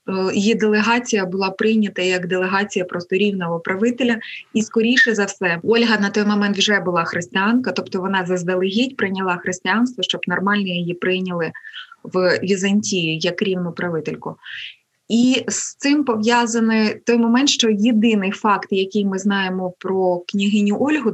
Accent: native